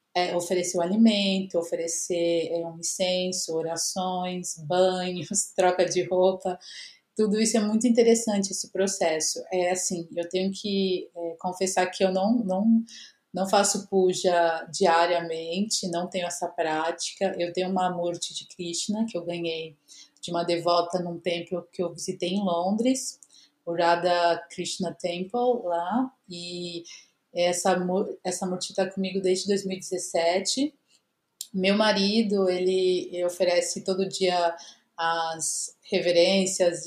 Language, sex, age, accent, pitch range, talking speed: Portuguese, female, 30-49, Brazilian, 175-195 Hz, 130 wpm